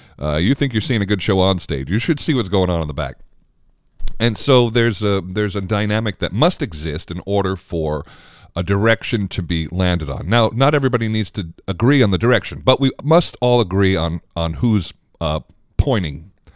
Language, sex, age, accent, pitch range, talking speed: English, male, 40-59, American, 90-120 Hz, 205 wpm